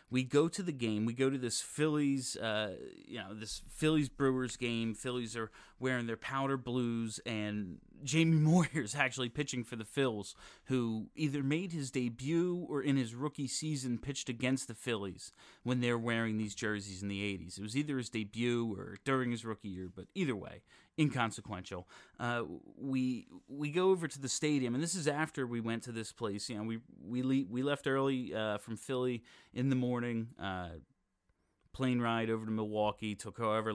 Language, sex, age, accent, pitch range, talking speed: English, male, 30-49, American, 105-135 Hz, 190 wpm